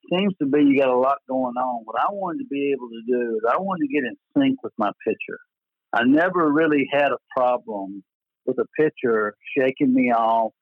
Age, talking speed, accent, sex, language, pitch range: 60-79, 220 wpm, American, male, English, 120-155 Hz